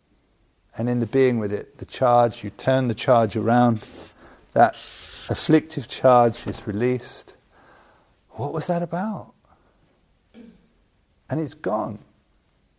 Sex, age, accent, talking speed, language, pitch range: male, 50-69, British, 115 wpm, English, 110-150 Hz